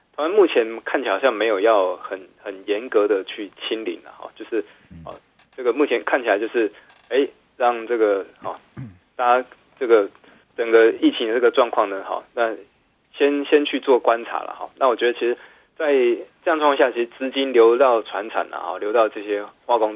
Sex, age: male, 20-39